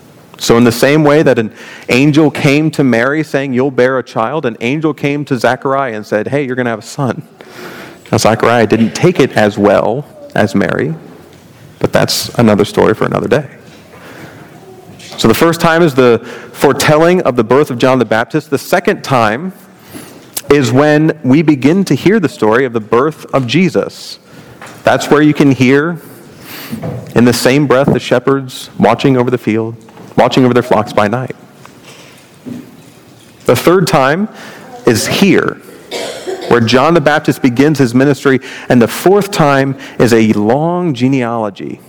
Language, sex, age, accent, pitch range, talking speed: English, male, 40-59, American, 120-150 Hz, 170 wpm